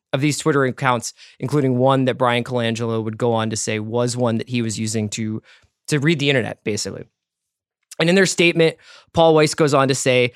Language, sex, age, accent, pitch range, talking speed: English, male, 20-39, American, 125-165 Hz, 210 wpm